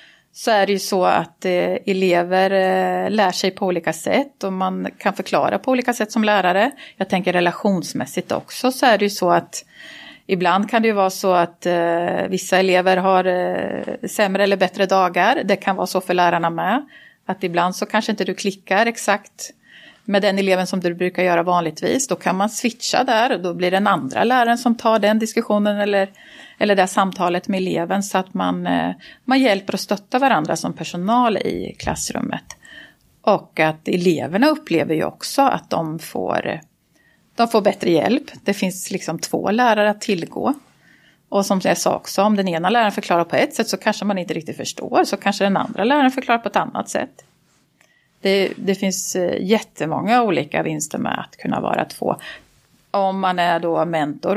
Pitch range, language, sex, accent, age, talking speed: 185-225 Hz, Swedish, female, native, 30-49, 185 wpm